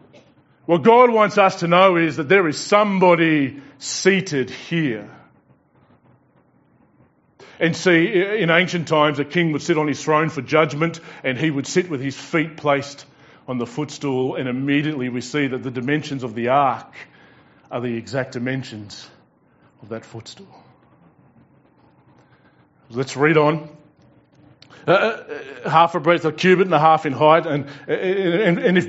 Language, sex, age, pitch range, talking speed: English, male, 40-59, 140-180 Hz, 150 wpm